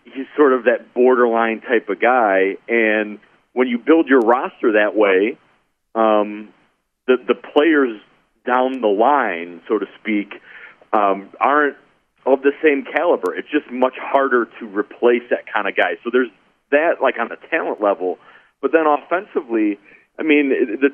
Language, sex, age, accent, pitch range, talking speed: English, male, 40-59, American, 110-140 Hz, 160 wpm